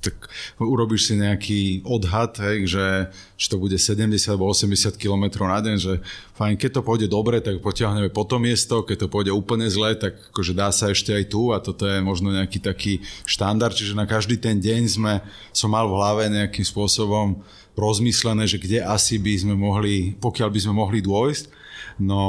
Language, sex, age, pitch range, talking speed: Slovak, male, 30-49, 100-110 Hz, 190 wpm